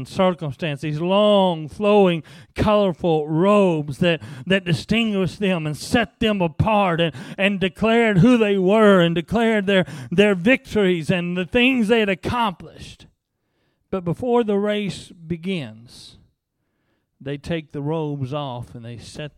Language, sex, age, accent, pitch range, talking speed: English, male, 40-59, American, 165-210 Hz, 135 wpm